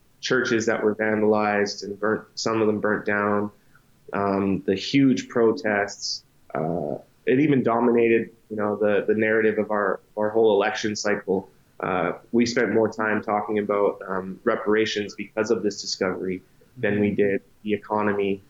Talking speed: 155 wpm